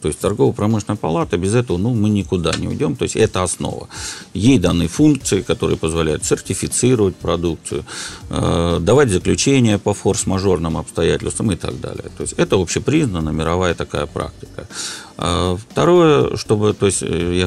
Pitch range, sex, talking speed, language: 85-105 Hz, male, 150 wpm, Russian